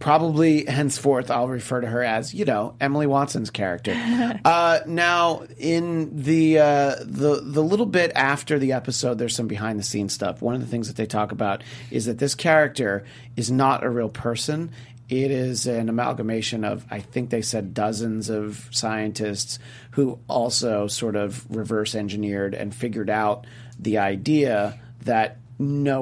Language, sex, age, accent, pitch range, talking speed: English, male, 40-59, American, 110-135 Hz, 160 wpm